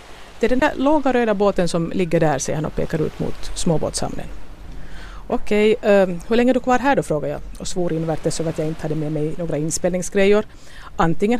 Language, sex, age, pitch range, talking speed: Swedish, female, 50-69, 165-235 Hz, 220 wpm